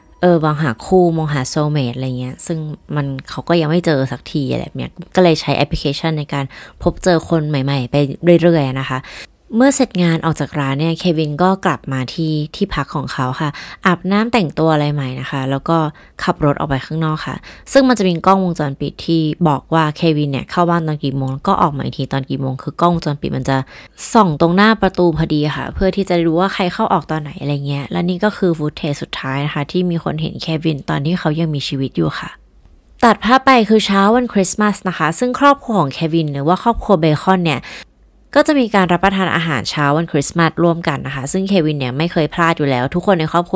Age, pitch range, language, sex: 20-39, 145-185 Hz, Thai, female